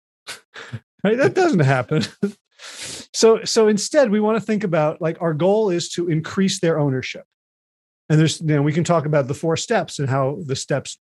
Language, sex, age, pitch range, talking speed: English, male, 40-59, 155-200 Hz, 190 wpm